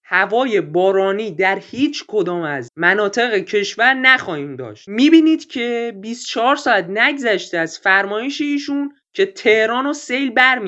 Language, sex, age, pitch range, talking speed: Persian, male, 20-39, 190-260 Hz, 125 wpm